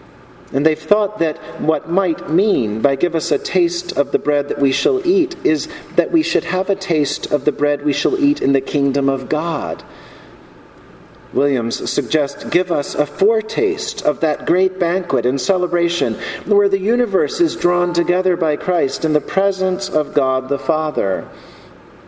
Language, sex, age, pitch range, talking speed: English, male, 40-59, 140-190 Hz, 175 wpm